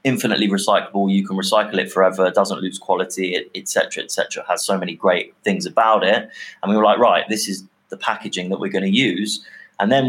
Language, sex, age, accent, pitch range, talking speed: English, male, 20-39, British, 95-105 Hz, 215 wpm